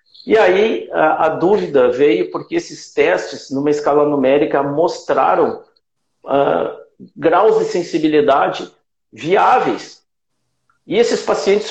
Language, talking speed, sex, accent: Portuguese, 110 wpm, male, Brazilian